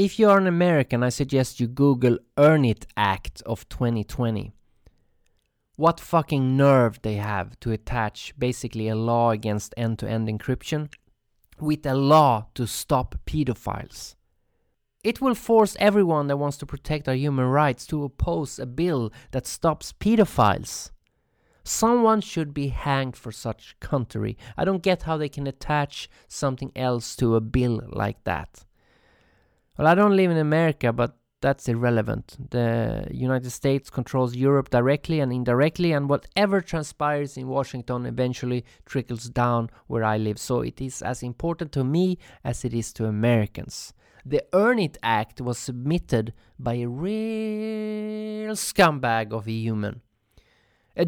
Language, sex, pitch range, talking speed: English, male, 115-165 Hz, 150 wpm